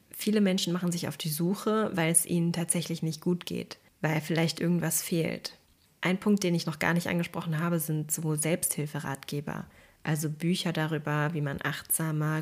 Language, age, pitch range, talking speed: German, 20-39, 160-180 Hz, 175 wpm